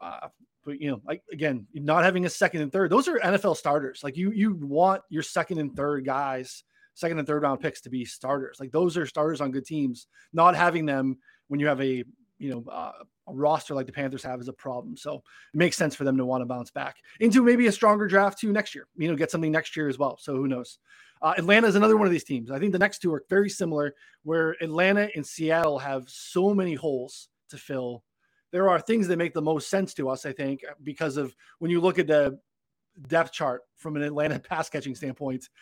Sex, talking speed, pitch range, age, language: male, 240 wpm, 135-175 Hz, 20-39, English